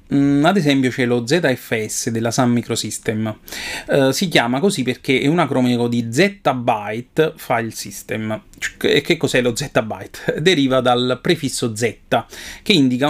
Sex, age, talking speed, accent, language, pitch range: male, 30-49, 145 wpm, native, Italian, 120-155 Hz